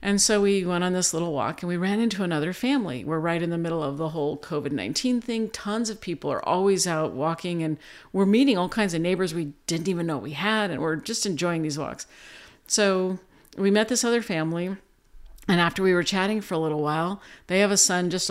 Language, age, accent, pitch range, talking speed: English, 50-69, American, 170-205 Hz, 230 wpm